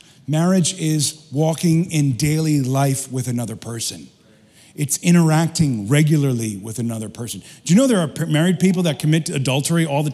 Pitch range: 135-165 Hz